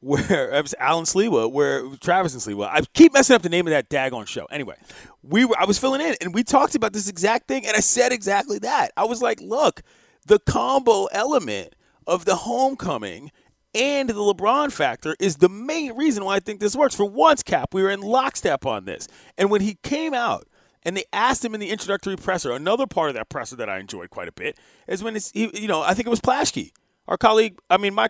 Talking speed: 235 wpm